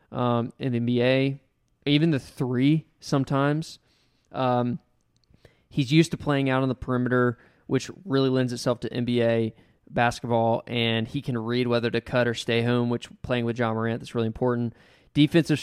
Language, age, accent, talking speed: English, 20-39, American, 165 wpm